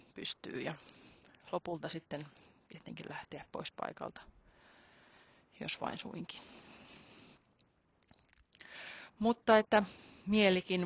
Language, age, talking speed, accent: Finnish, 30-49, 75 wpm, native